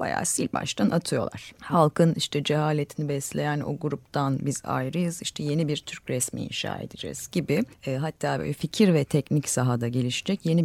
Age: 30-49